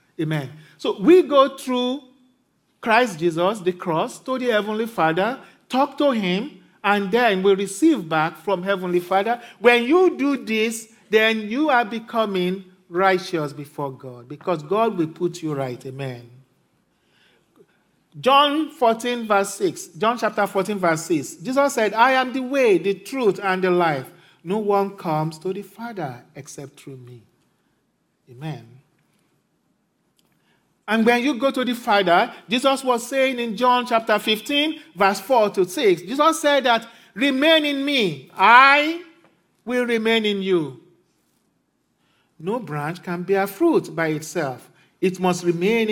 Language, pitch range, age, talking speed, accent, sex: English, 170-250 Hz, 50-69, 145 wpm, Nigerian, male